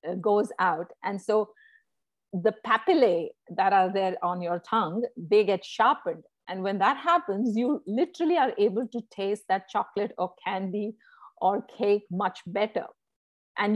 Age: 50-69